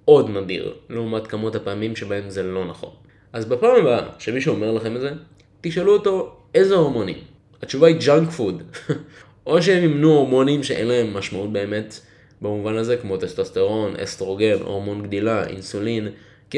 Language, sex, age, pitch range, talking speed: Hebrew, male, 20-39, 100-150 Hz, 150 wpm